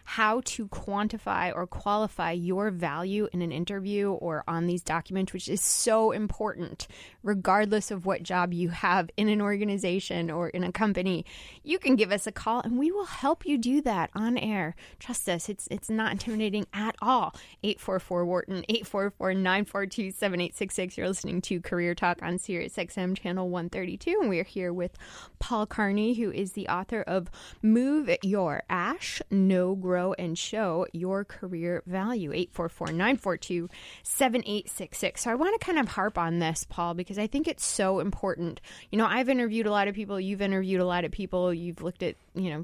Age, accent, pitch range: 20-39, American, 175-215 Hz